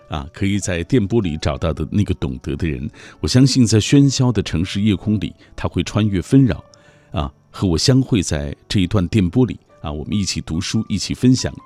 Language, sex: Chinese, male